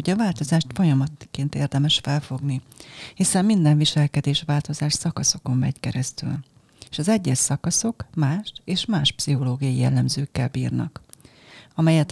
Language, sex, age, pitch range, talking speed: Hungarian, female, 30-49, 140-170 Hz, 115 wpm